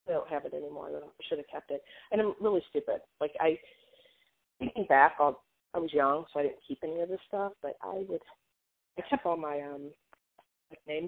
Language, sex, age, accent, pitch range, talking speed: English, female, 20-39, American, 145-205 Hz, 205 wpm